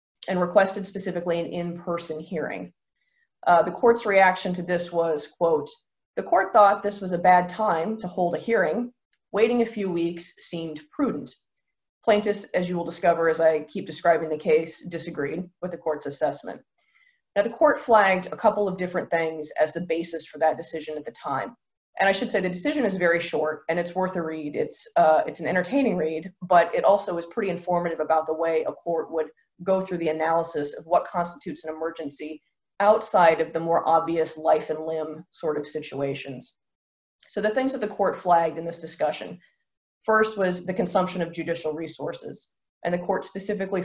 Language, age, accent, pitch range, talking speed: English, 20-39, American, 160-195 Hz, 190 wpm